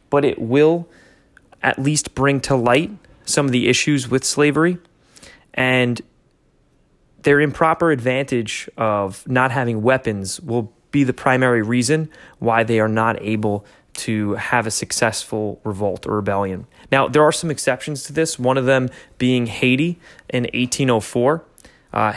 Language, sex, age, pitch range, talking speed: English, male, 20-39, 115-140 Hz, 145 wpm